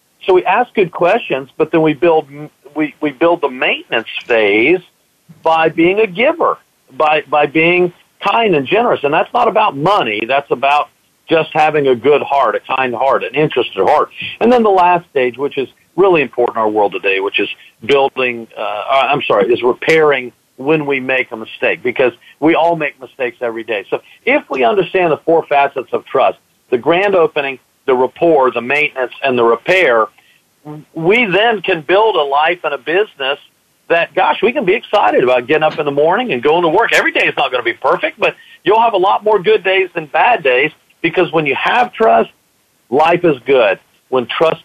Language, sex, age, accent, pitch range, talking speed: English, male, 50-69, American, 145-215 Hz, 200 wpm